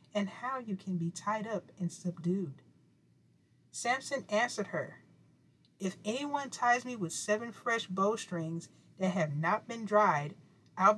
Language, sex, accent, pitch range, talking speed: English, female, American, 175-225 Hz, 140 wpm